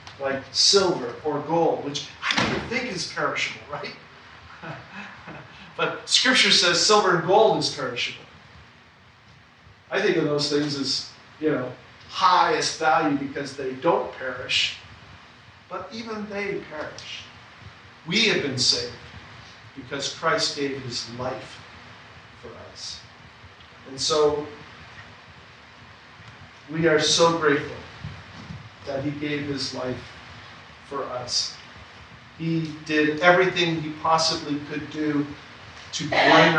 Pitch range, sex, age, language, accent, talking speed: 125-155 Hz, male, 50-69, English, American, 115 wpm